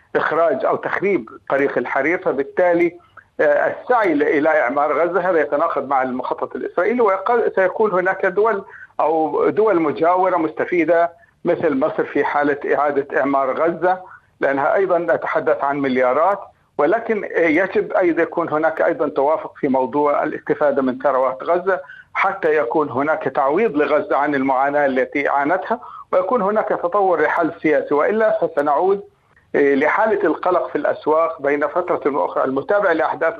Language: Arabic